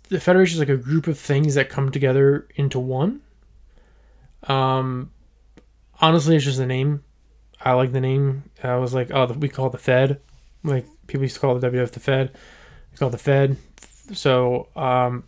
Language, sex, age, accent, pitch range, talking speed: English, male, 20-39, American, 125-145 Hz, 195 wpm